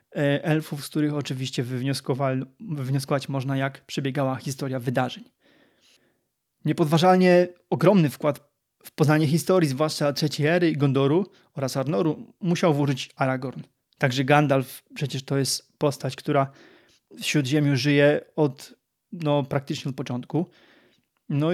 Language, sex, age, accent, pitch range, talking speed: Polish, male, 20-39, native, 140-175 Hz, 115 wpm